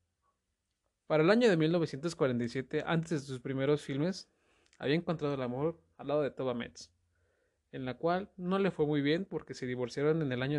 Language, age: Spanish, 20-39